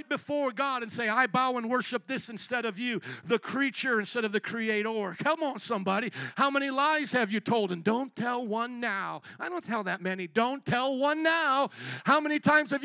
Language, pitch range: English, 215-270 Hz